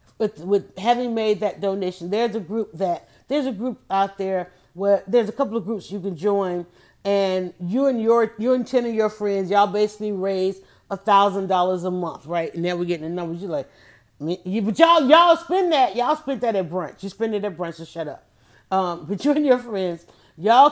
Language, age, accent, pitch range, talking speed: English, 40-59, American, 175-220 Hz, 225 wpm